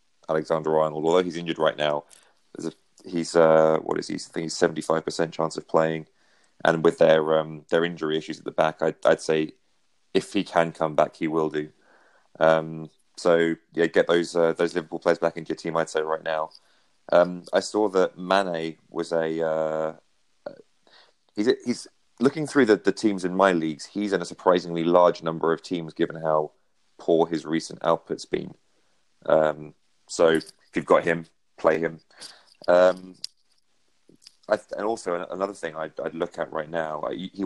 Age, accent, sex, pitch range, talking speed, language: 30-49, British, male, 80-90 Hz, 175 wpm, English